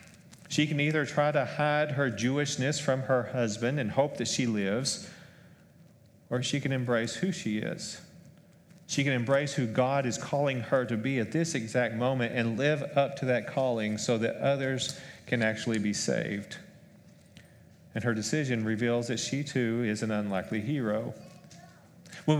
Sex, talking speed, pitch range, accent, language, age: male, 165 wpm, 130-180 Hz, American, English, 40-59